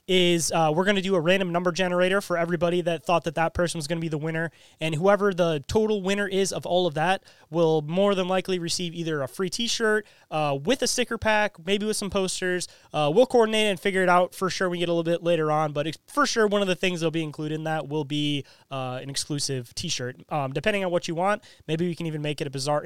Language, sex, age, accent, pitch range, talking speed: English, male, 20-39, American, 145-190 Hz, 255 wpm